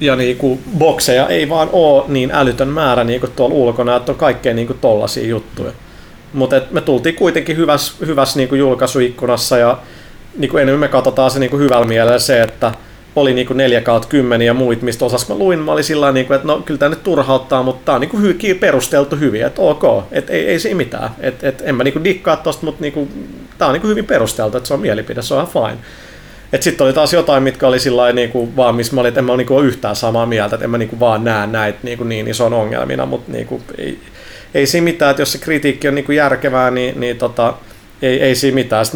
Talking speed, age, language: 230 wpm, 30-49, Finnish